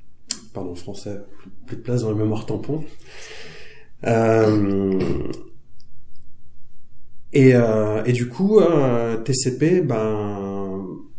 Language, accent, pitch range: French, French, 105-135 Hz